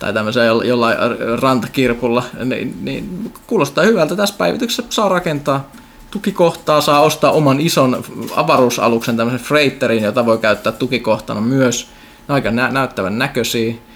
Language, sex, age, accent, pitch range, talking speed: Finnish, male, 20-39, native, 120-155 Hz, 125 wpm